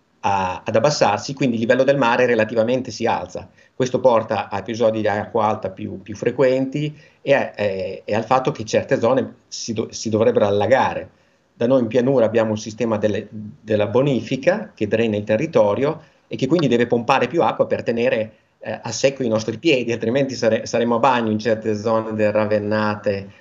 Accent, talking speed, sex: native, 190 wpm, male